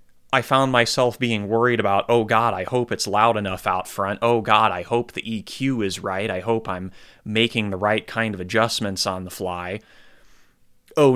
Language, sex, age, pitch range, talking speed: English, male, 30-49, 100-120 Hz, 195 wpm